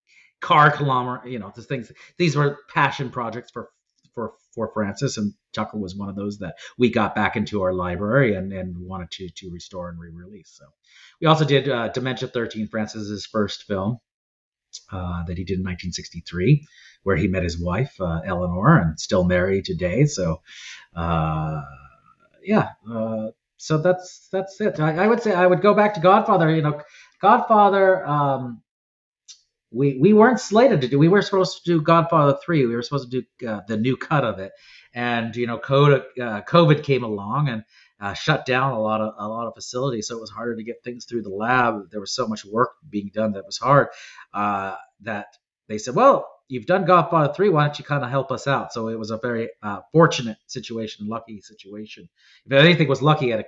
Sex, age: male, 40-59